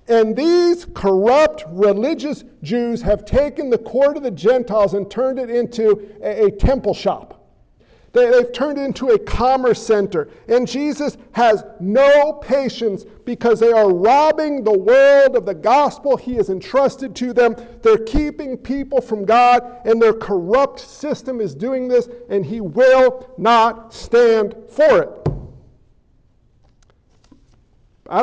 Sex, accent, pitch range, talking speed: male, American, 215-275 Hz, 140 wpm